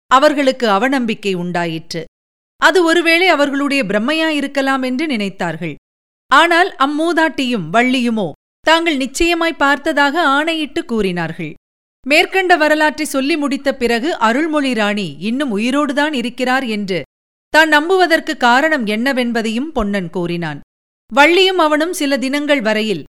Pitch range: 215-305 Hz